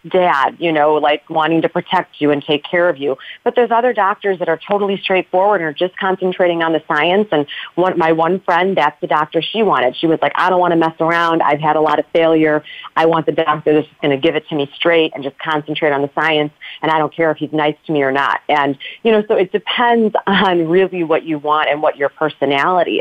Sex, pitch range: female, 150-190 Hz